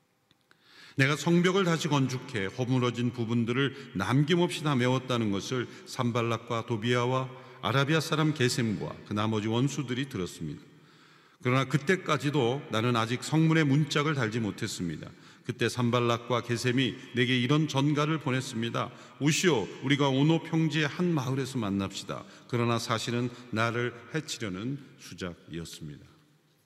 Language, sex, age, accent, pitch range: Korean, male, 40-59, native, 120-160 Hz